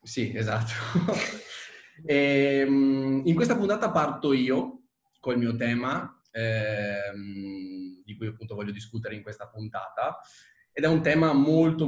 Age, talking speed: 20-39, 120 wpm